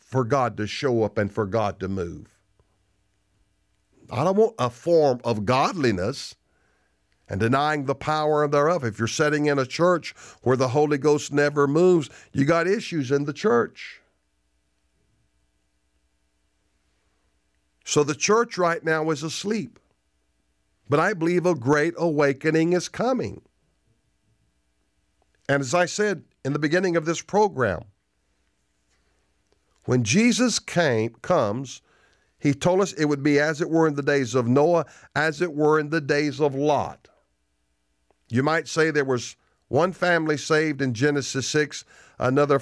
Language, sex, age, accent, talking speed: English, male, 50-69, American, 145 wpm